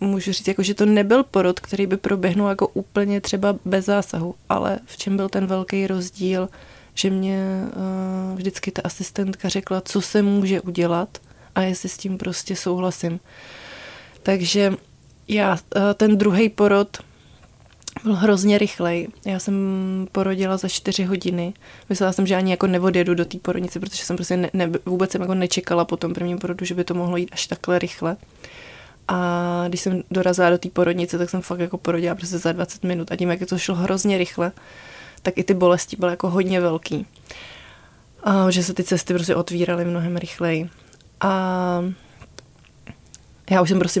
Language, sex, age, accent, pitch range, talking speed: Czech, female, 20-39, native, 180-200 Hz, 175 wpm